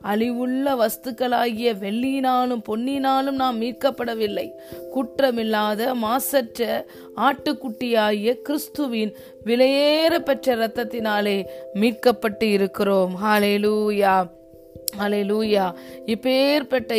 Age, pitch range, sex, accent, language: 20-39, 210-255 Hz, female, native, Tamil